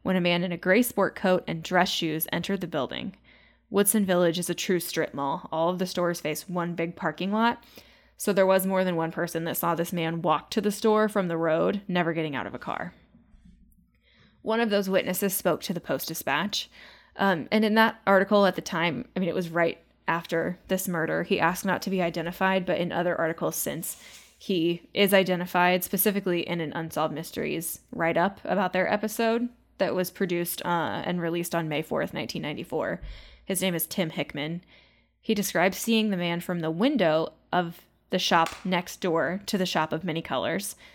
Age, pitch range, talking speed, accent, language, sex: 10-29, 165-195 Hz, 195 wpm, American, English, female